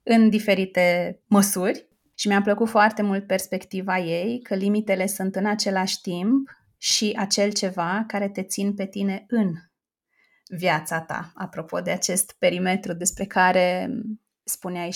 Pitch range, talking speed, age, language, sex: 190-225 Hz, 135 wpm, 20-39, Romanian, female